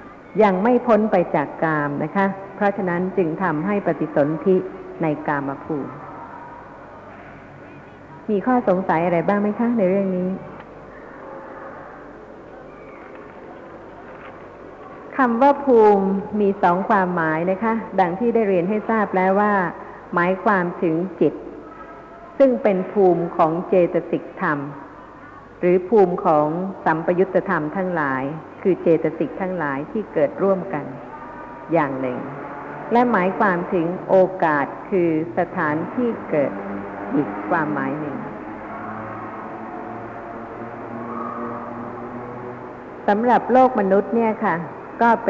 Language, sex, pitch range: Thai, female, 160-205 Hz